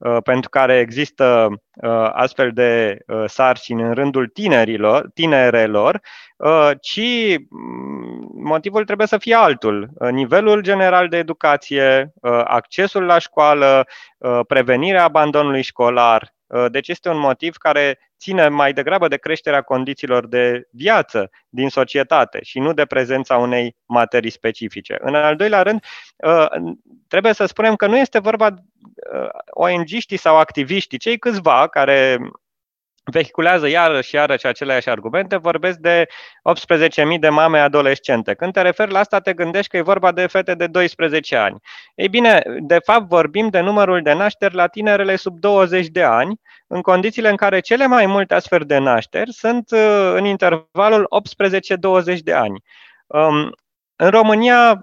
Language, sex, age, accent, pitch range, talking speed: Romanian, male, 20-39, native, 135-200 Hz, 140 wpm